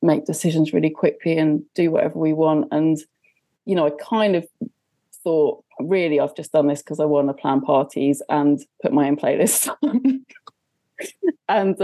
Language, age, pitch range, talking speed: English, 20-39, 155-225 Hz, 165 wpm